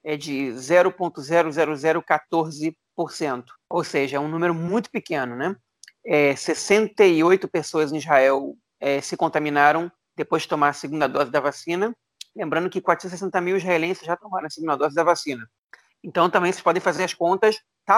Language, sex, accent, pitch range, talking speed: Portuguese, male, Brazilian, 155-190 Hz, 155 wpm